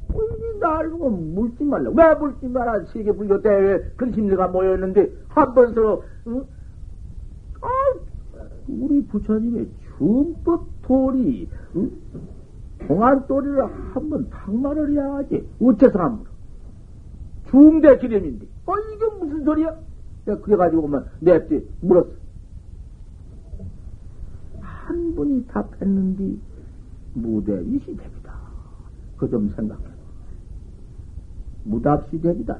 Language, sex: Korean, male